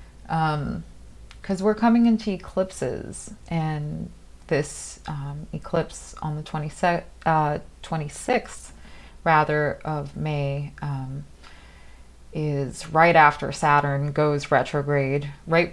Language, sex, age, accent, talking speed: English, female, 30-49, American, 100 wpm